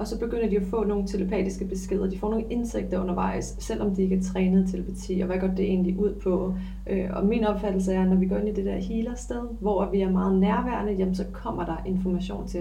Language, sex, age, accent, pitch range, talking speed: Danish, female, 30-49, native, 185-205 Hz, 245 wpm